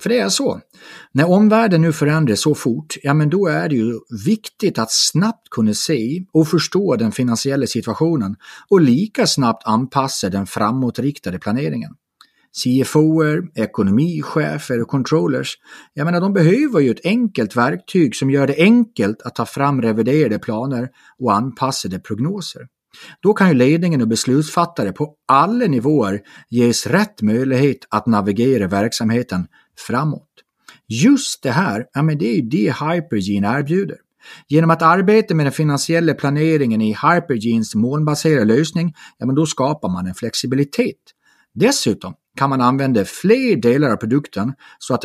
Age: 30-49